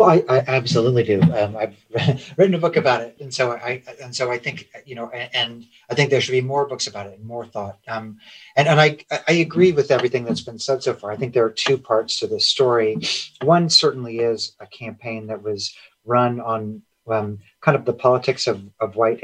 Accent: American